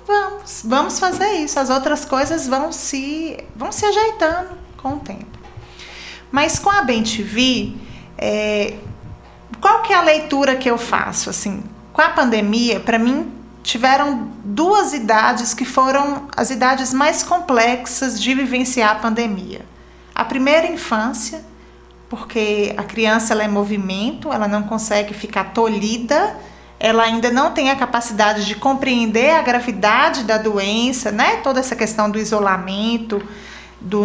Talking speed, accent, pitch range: 135 wpm, Brazilian, 220-290 Hz